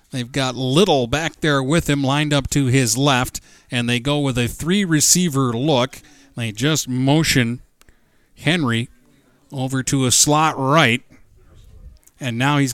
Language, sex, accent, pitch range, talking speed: English, male, American, 125-155 Hz, 145 wpm